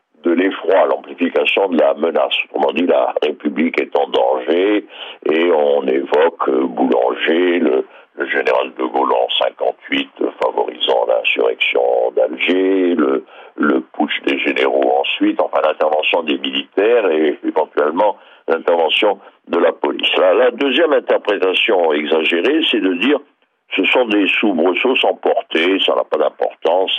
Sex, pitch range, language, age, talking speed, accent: male, 310-480 Hz, French, 60-79, 135 wpm, French